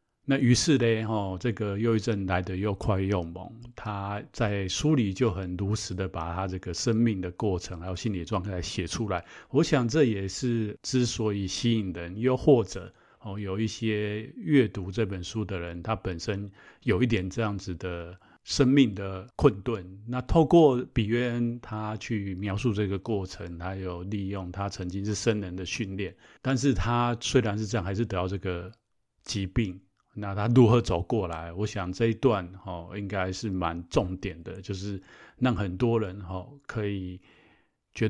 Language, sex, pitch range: Chinese, male, 95-115 Hz